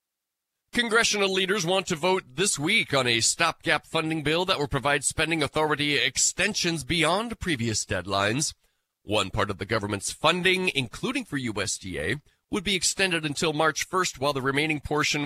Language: English